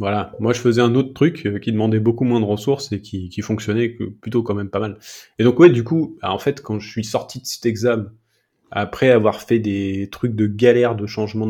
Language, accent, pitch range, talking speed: French, French, 95-120 Hz, 235 wpm